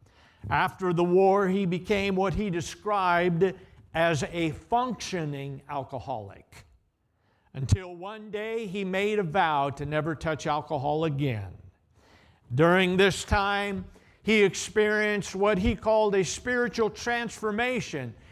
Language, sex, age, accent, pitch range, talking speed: English, male, 50-69, American, 150-225 Hz, 115 wpm